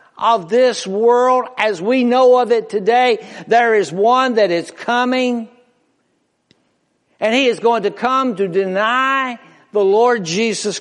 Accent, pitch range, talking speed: American, 165-230 Hz, 145 wpm